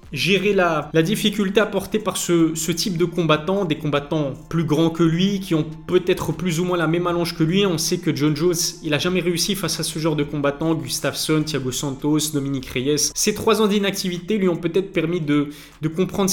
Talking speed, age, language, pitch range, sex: 215 wpm, 20-39, French, 150-180 Hz, male